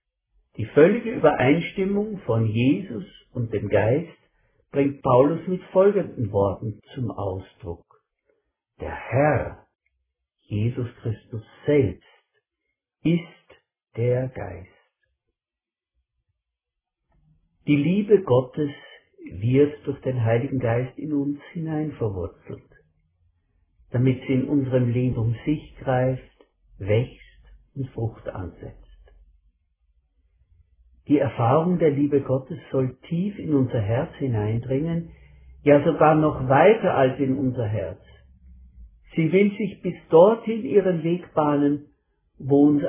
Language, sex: German, male